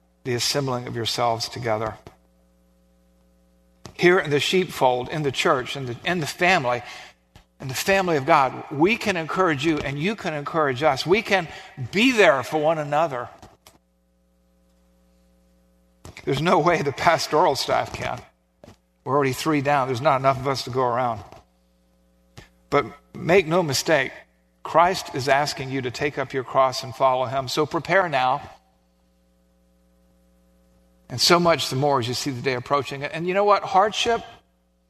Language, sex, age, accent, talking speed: English, male, 50-69, American, 160 wpm